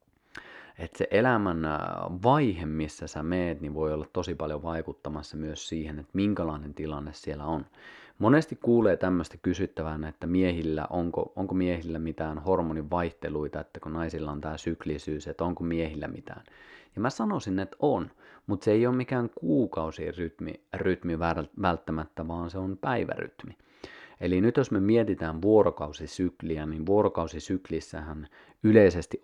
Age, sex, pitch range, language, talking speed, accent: 30-49, male, 80-95 Hz, Finnish, 135 wpm, native